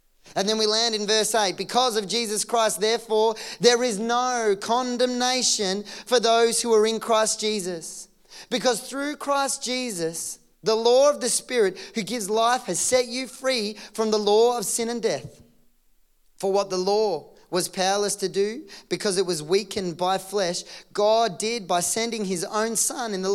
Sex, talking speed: male, 175 wpm